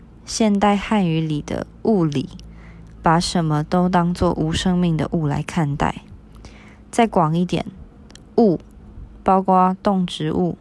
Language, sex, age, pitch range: Chinese, female, 20-39, 160-190 Hz